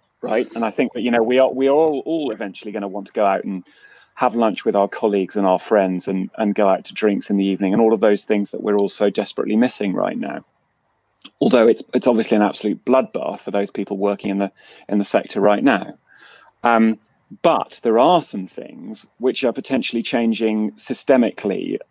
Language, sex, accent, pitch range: English, male, British, 100-125 Hz